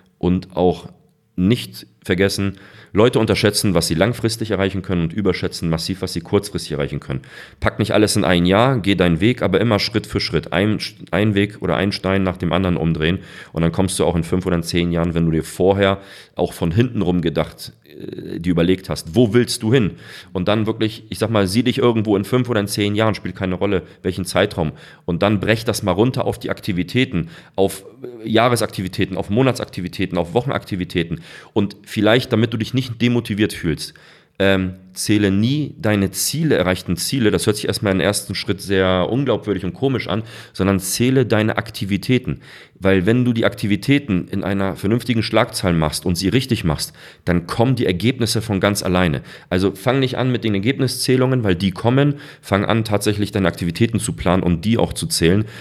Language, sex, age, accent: German, male, 40-59, German